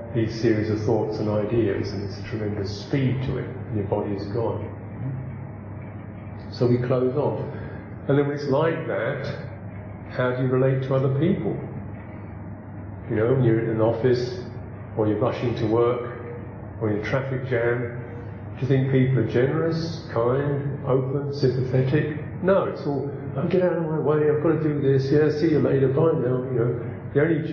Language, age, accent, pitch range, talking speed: English, 50-69, British, 110-140 Hz, 185 wpm